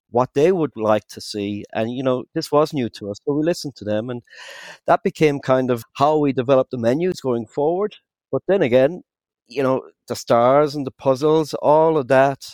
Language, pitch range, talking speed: English, 120-150 Hz, 210 wpm